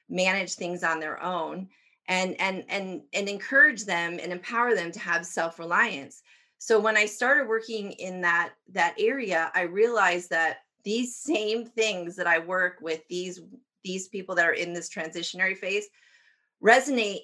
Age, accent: 30-49, American